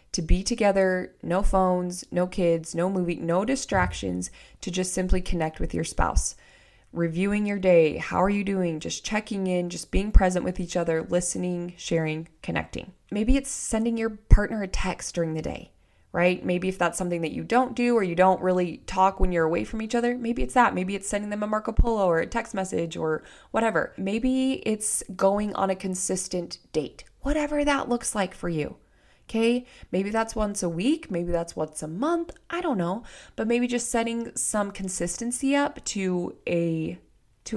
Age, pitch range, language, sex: 20-39, 170-215 Hz, English, female